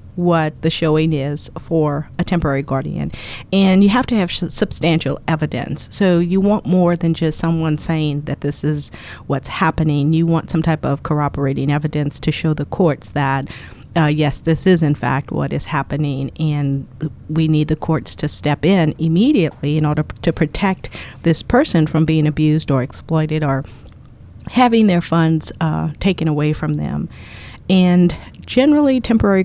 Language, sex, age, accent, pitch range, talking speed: English, female, 50-69, American, 150-175 Hz, 165 wpm